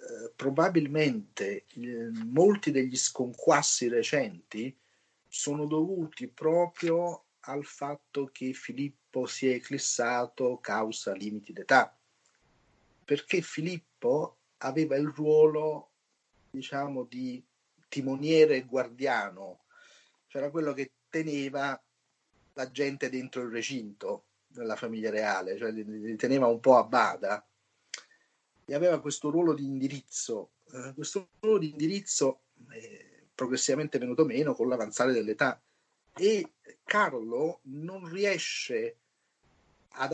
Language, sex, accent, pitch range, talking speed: Italian, male, native, 130-165 Hz, 110 wpm